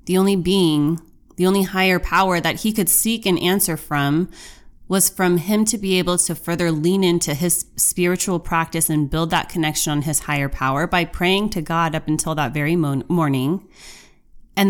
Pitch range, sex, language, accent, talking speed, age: 160-190 Hz, female, English, American, 185 wpm, 20-39